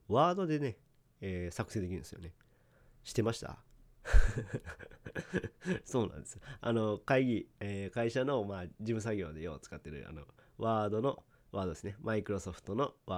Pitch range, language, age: 95-130 Hz, Japanese, 40-59